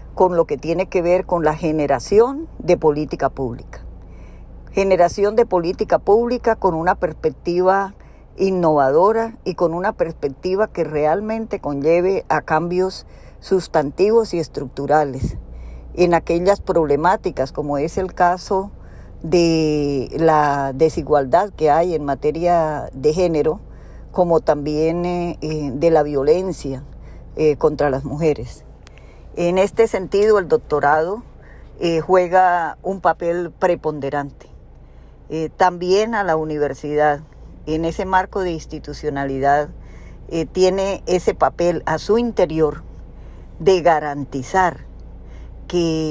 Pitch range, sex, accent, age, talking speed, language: 145-180 Hz, female, American, 50-69, 110 wpm, Spanish